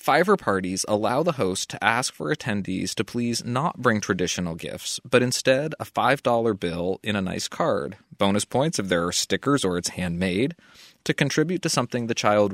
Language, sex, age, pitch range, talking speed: English, male, 20-39, 95-130 Hz, 185 wpm